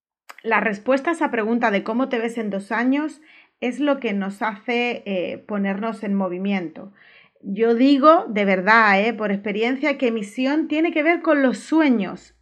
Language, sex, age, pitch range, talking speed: Spanish, female, 30-49, 205-280 Hz, 175 wpm